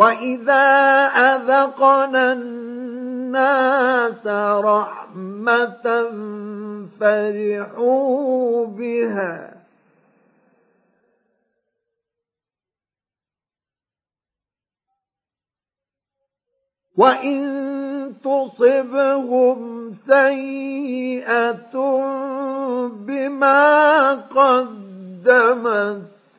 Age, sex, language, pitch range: 50-69, male, Arabic, 230-275 Hz